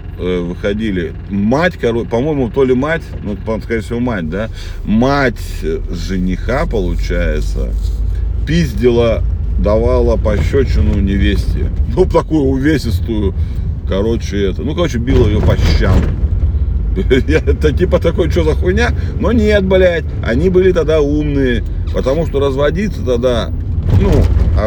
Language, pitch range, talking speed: Russian, 85-115 Hz, 120 wpm